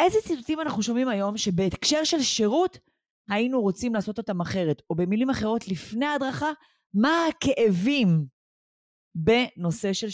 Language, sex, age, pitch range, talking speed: Hebrew, female, 30-49, 175-230 Hz, 130 wpm